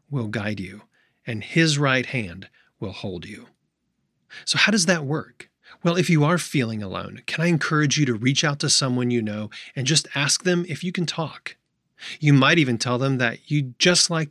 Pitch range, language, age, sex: 115-150 Hz, English, 30-49, male